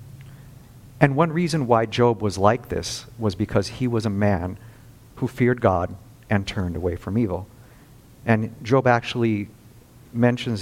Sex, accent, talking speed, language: male, American, 145 wpm, English